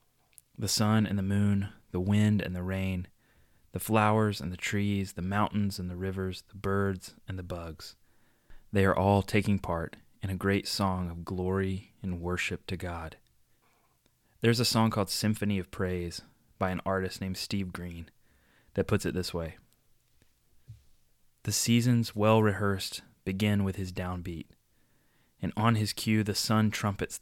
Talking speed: 160 wpm